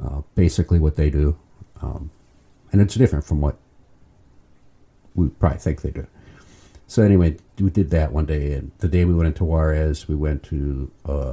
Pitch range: 75-95 Hz